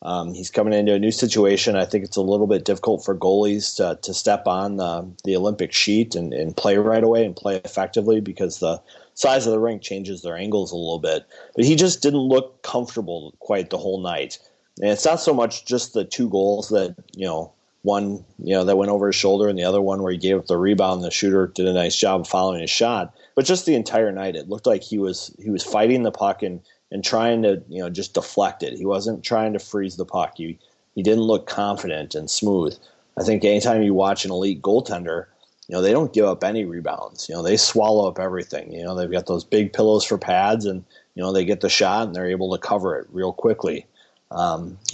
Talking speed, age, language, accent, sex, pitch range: 240 wpm, 30-49, English, American, male, 95-110 Hz